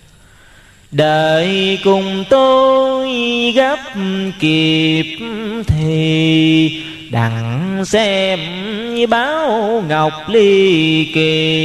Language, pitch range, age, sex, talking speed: Vietnamese, 160-235 Hz, 20-39, male, 60 wpm